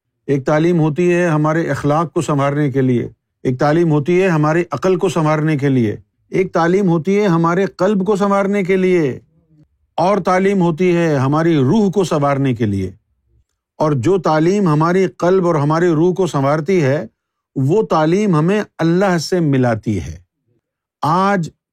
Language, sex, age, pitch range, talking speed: Urdu, male, 50-69, 145-195 Hz, 165 wpm